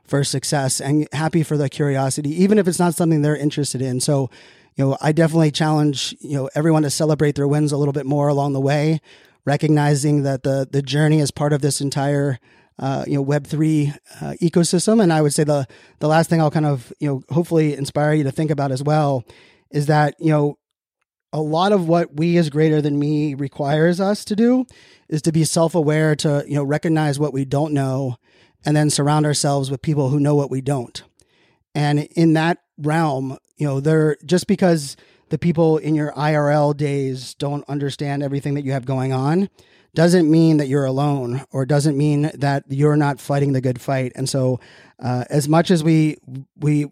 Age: 30-49